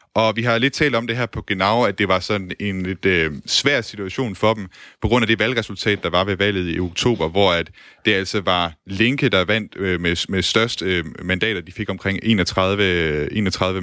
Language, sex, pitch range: Danish, male, 90-110 Hz